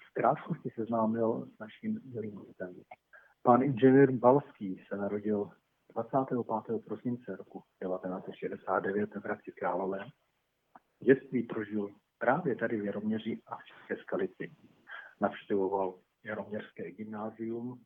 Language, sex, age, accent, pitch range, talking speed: Czech, male, 50-69, native, 105-125 Hz, 110 wpm